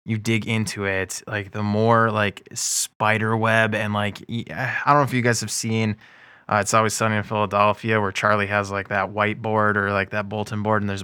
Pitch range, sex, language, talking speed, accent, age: 105-120 Hz, male, English, 210 wpm, American, 20-39